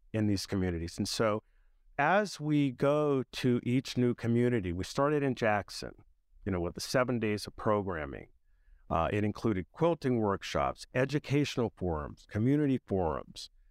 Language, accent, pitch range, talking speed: English, American, 105-130 Hz, 145 wpm